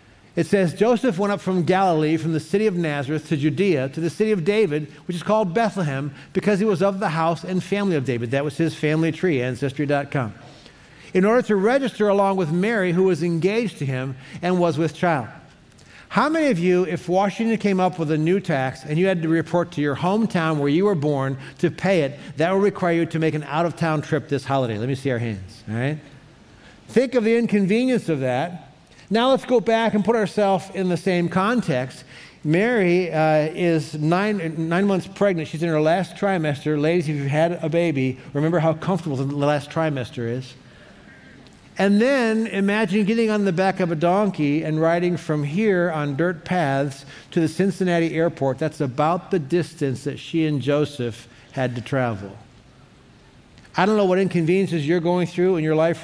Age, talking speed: 60-79, 200 wpm